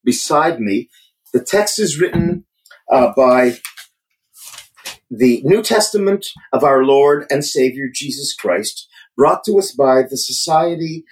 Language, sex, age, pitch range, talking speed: English, male, 40-59, 130-180 Hz, 130 wpm